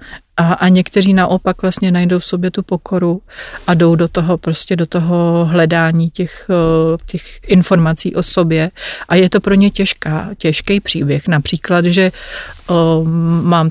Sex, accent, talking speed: female, native, 155 wpm